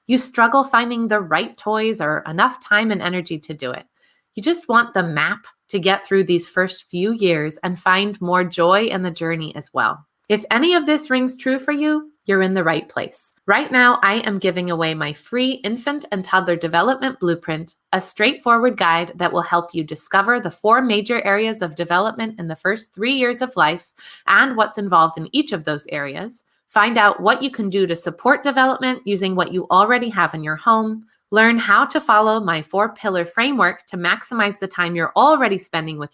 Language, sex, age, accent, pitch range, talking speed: English, female, 20-39, American, 175-240 Hz, 205 wpm